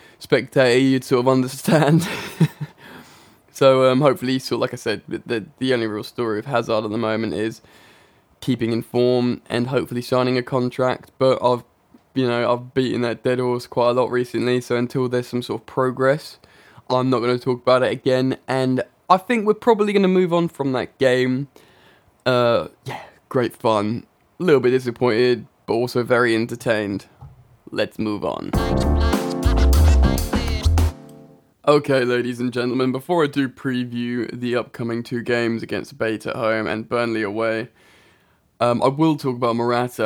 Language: English